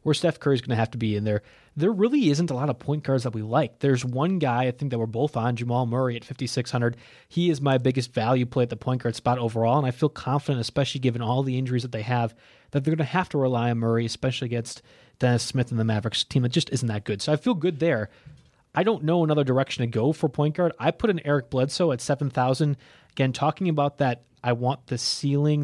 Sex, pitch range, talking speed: male, 120-150 Hz, 255 wpm